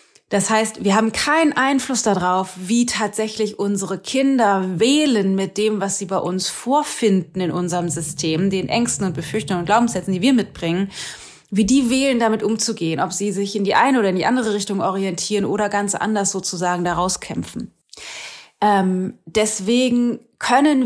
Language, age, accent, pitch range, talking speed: German, 30-49, German, 185-225 Hz, 165 wpm